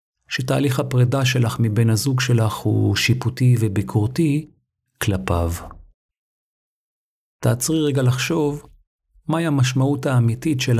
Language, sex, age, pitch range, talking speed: Hebrew, male, 50-69, 105-130 Hz, 95 wpm